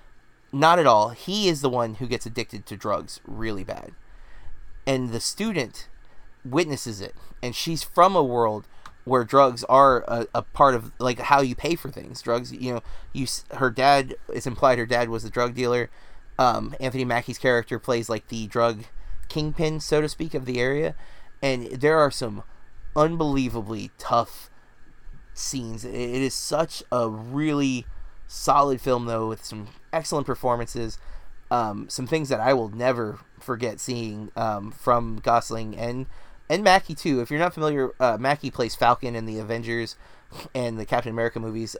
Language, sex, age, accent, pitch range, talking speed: English, male, 30-49, American, 115-140 Hz, 170 wpm